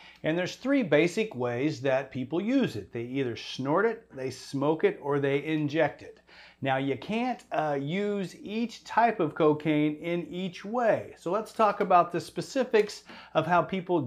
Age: 40-59